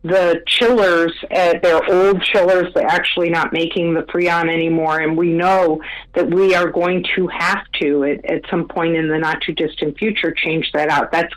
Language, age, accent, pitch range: English, 50-69, American, 165-200 Hz